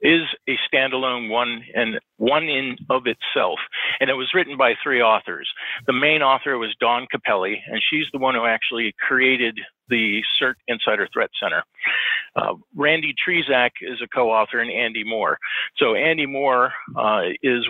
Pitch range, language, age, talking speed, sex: 120-160 Hz, English, 50-69, 165 wpm, male